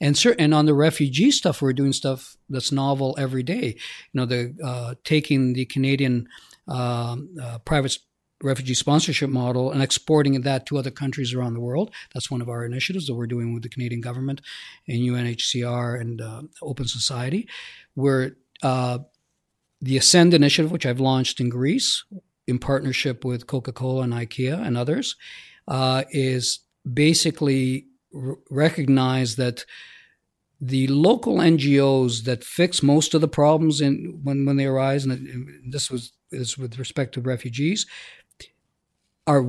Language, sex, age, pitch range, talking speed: English, male, 50-69, 125-145 Hz, 155 wpm